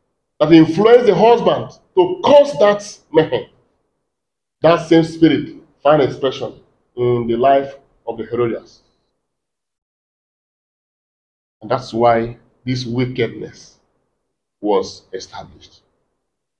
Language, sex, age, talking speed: English, male, 40-59, 90 wpm